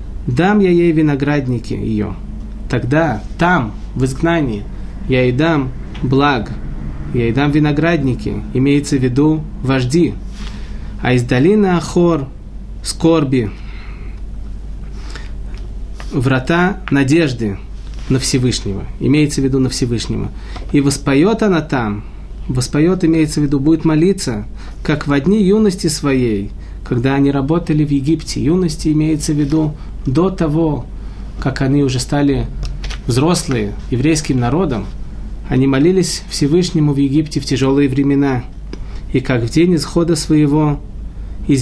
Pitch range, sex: 115-155 Hz, male